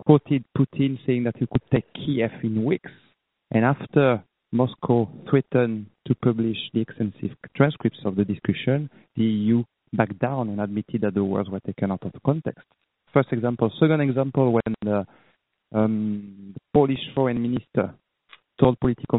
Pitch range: 105-130 Hz